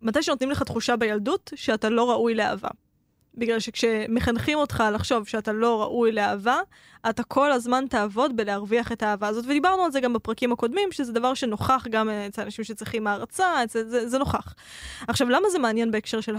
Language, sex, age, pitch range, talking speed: Hebrew, female, 10-29, 215-270 Hz, 180 wpm